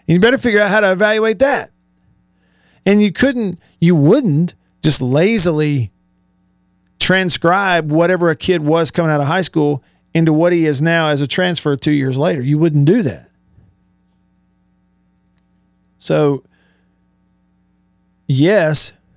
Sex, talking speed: male, 130 wpm